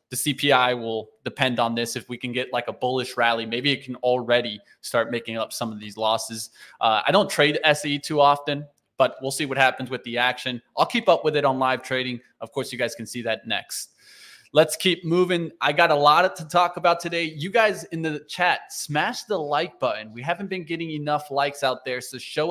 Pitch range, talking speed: 125-145 Hz, 230 wpm